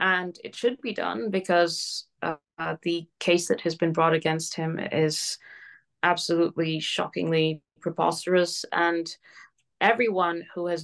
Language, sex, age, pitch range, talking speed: English, female, 20-39, 165-200 Hz, 125 wpm